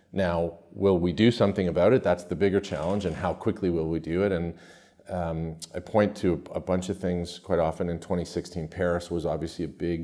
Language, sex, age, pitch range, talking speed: English, male, 40-59, 85-100 Hz, 215 wpm